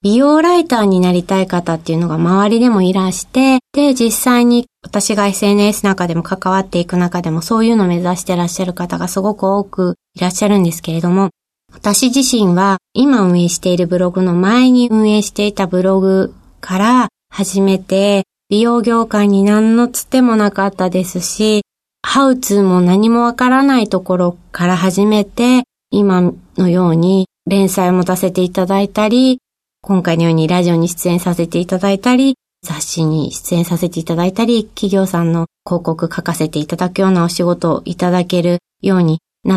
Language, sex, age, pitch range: Japanese, female, 30-49, 175-210 Hz